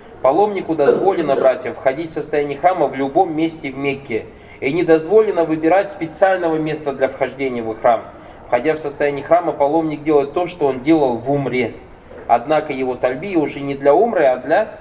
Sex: male